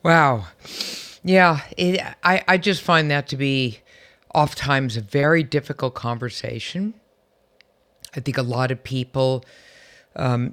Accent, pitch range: American, 125-155 Hz